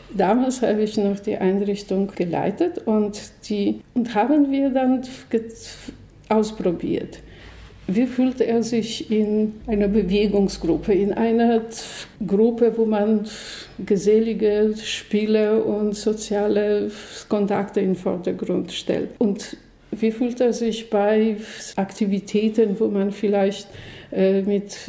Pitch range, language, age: 200-240 Hz, German, 50-69